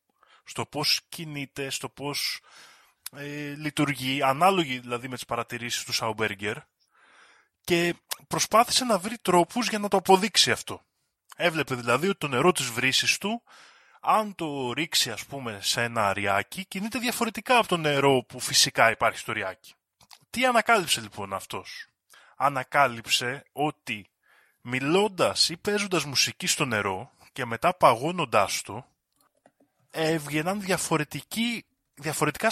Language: Greek